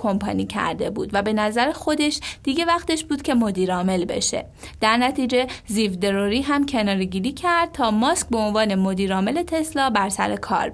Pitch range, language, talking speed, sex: 205-280 Hz, Persian, 155 wpm, female